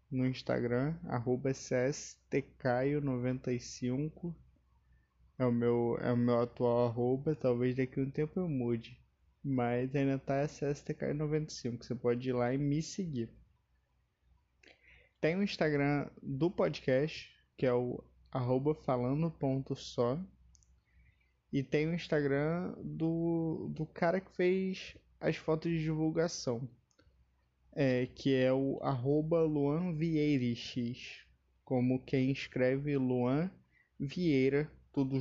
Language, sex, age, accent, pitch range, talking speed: Portuguese, male, 20-39, Brazilian, 125-155 Hz, 115 wpm